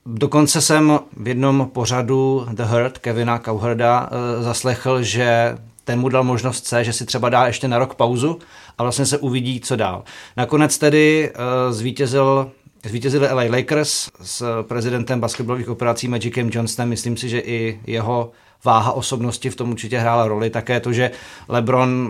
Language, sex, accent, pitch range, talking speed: Czech, male, native, 115-130 Hz, 160 wpm